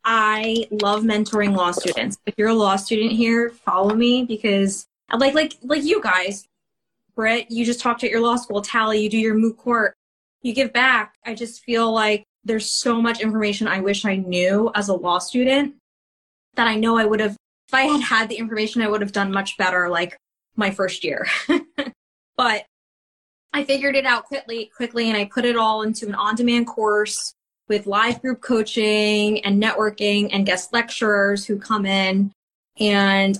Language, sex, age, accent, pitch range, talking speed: English, female, 20-39, American, 205-235 Hz, 185 wpm